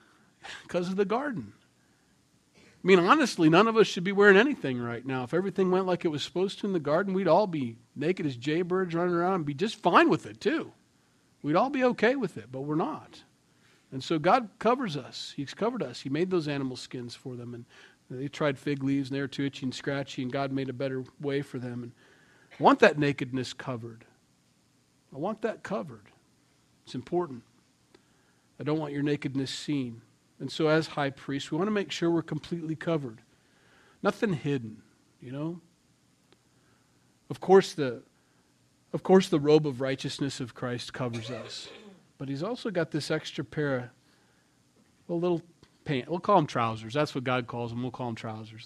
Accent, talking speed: American, 195 wpm